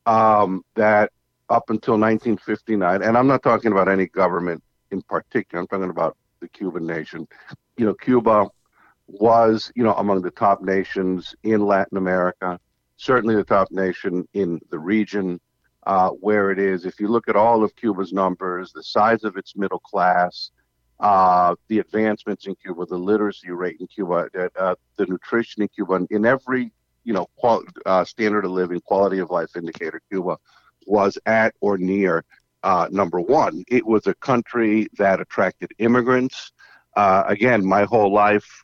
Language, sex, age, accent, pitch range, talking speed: English, male, 50-69, American, 95-115 Hz, 165 wpm